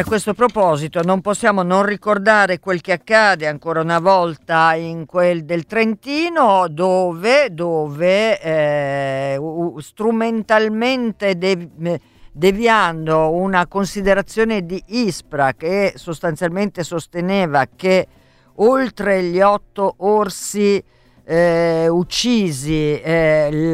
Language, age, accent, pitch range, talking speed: Italian, 50-69, native, 155-200 Hz, 95 wpm